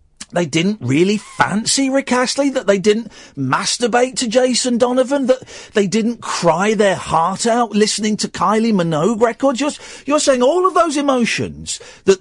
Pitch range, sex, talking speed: 165-275 Hz, male, 160 wpm